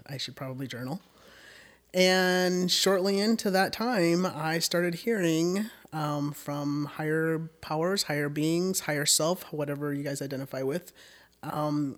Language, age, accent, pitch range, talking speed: English, 30-49, American, 145-185 Hz, 130 wpm